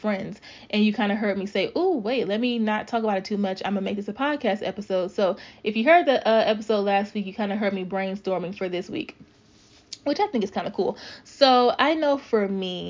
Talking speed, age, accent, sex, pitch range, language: 255 wpm, 30-49, American, female, 195-230 Hz, English